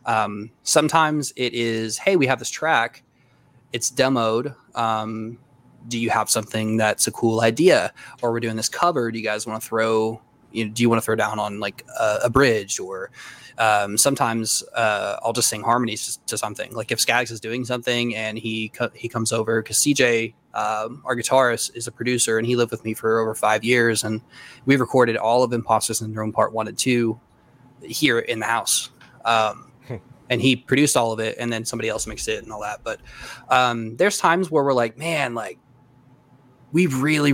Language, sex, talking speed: English, male, 200 wpm